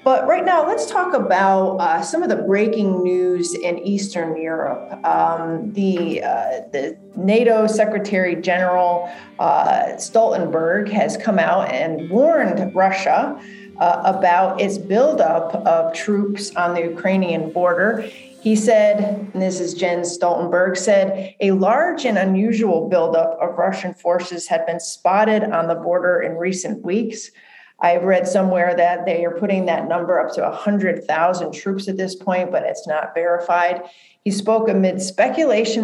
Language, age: English, 40-59